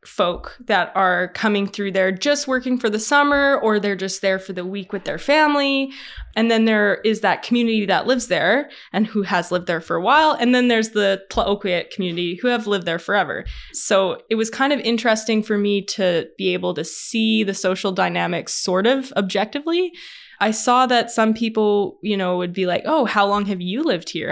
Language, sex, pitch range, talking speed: English, female, 180-230 Hz, 210 wpm